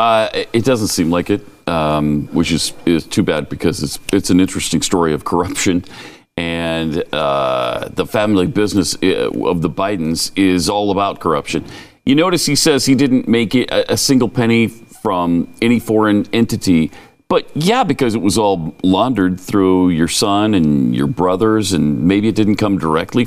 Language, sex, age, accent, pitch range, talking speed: English, male, 40-59, American, 90-130 Hz, 170 wpm